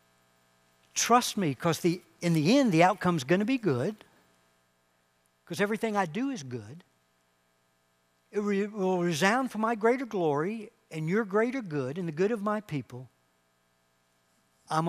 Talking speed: 155 wpm